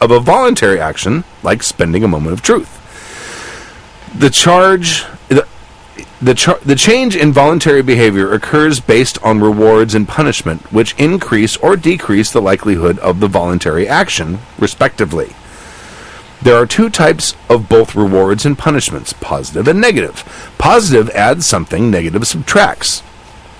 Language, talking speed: English, 135 wpm